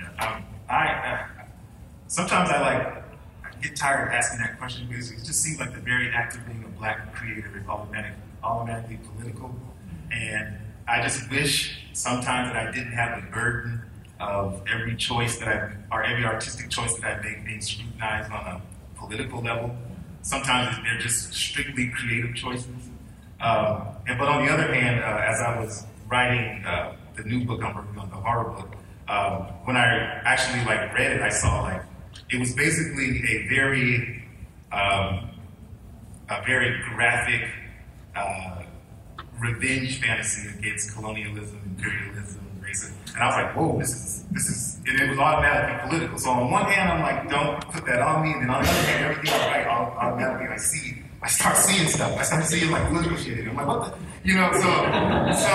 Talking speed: 180 wpm